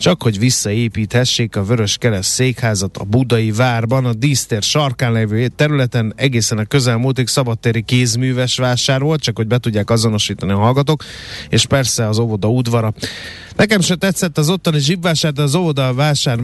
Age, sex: 30-49, male